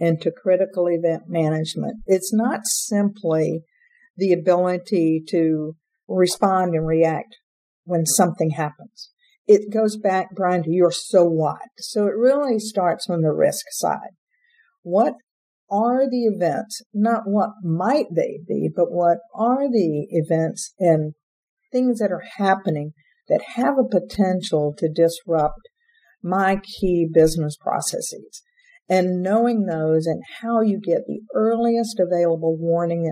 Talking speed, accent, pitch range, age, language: 130 wpm, American, 165-225 Hz, 50-69, English